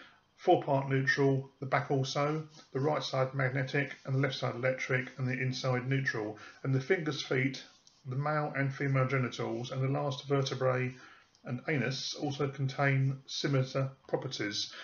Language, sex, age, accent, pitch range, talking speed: English, male, 40-59, British, 125-140 Hz, 150 wpm